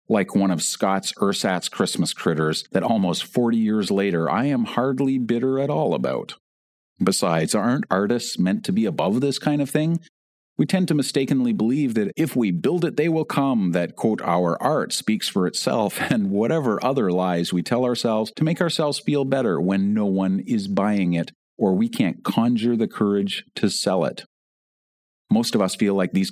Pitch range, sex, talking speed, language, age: 95-150 Hz, male, 190 wpm, English, 40-59